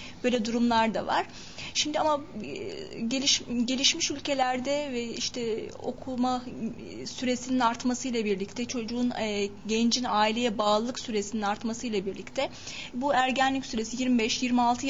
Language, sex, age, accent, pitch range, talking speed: Turkish, female, 30-49, native, 225-275 Hz, 105 wpm